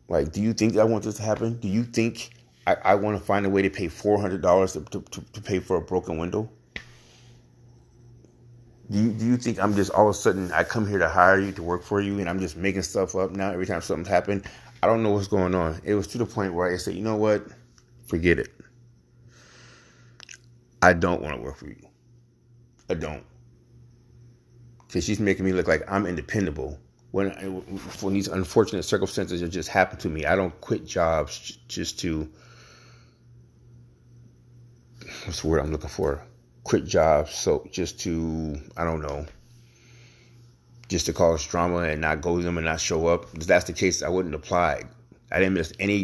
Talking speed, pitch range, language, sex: 200 wpm, 85-120 Hz, English, male